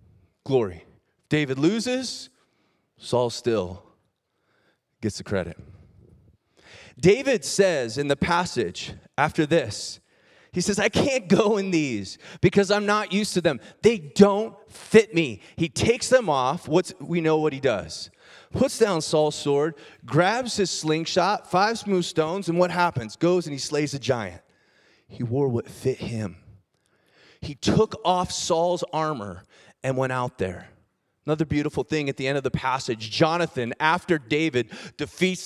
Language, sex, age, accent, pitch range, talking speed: English, male, 30-49, American, 115-180 Hz, 145 wpm